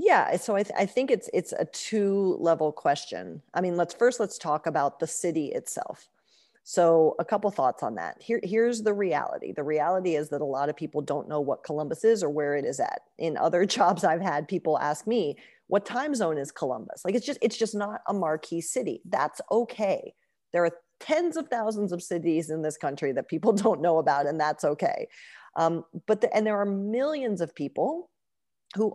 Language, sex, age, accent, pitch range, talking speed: English, female, 40-59, American, 160-220 Hz, 210 wpm